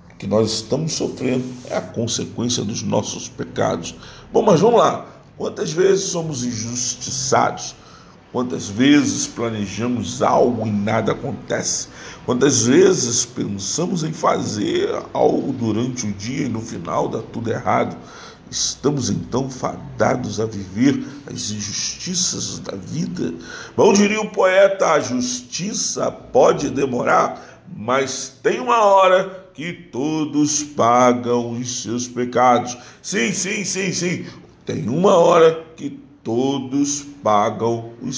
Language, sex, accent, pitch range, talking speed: Portuguese, male, Brazilian, 120-170 Hz, 125 wpm